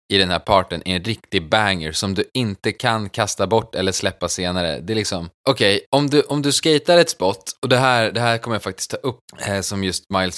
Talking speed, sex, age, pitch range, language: 250 wpm, male, 20-39, 95-125 Hz, Swedish